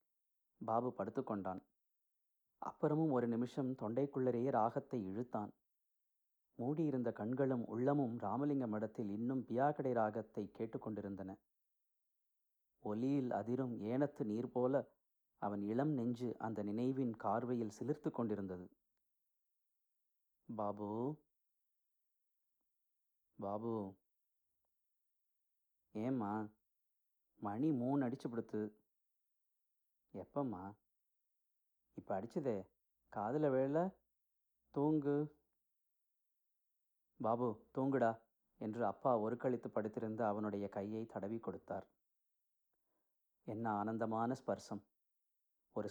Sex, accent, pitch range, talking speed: male, native, 105-125 Hz, 75 wpm